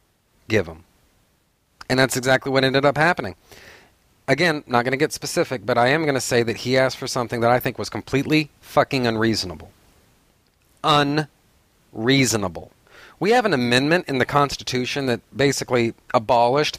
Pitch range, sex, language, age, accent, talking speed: 115-140 Hz, male, English, 40-59, American, 155 wpm